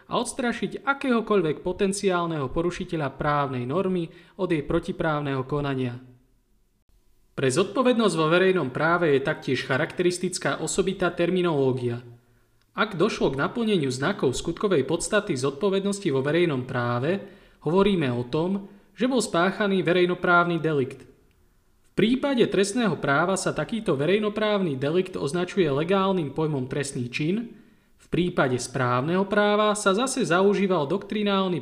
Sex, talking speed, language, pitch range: male, 115 wpm, Slovak, 140-195 Hz